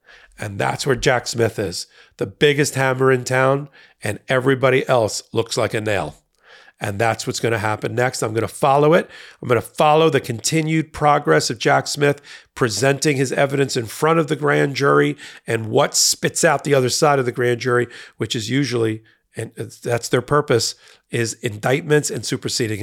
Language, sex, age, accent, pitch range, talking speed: English, male, 40-59, American, 130-165 Hz, 185 wpm